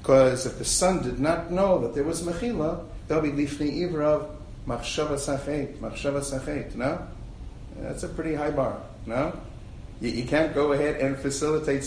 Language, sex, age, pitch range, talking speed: English, male, 50-69, 125-155 Hz, 175 wpm